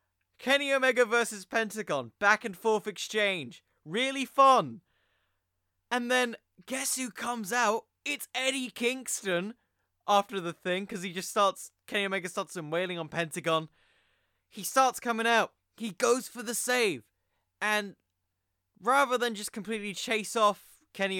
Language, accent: English, British